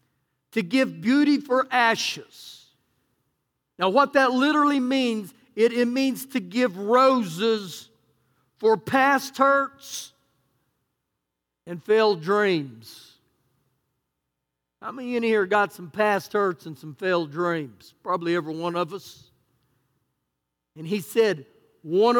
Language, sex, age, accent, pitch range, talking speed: English, male, 50-69, American, 140-230 Hz, 120 wpm